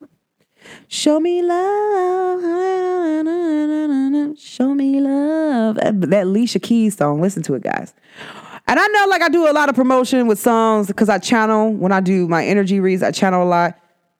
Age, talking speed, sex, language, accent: 20-39, 165 wpm, female, English, American